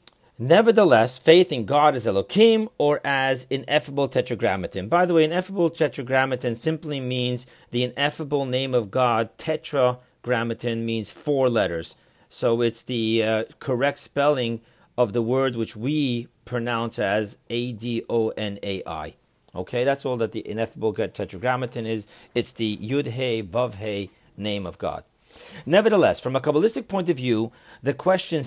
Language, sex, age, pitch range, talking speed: English, male, 40-59, 120-155 Hz, 135 wpm